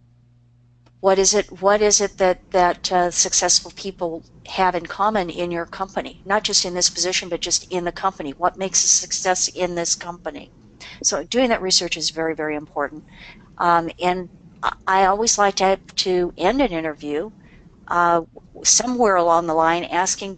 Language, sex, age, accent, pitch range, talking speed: English, female, 50-69, American, 165-190 Hz, 170 wpm